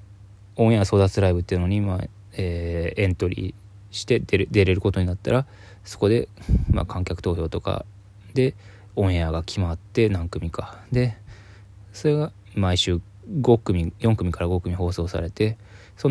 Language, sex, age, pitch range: Japanese, male, 20-39, 90-105 Hz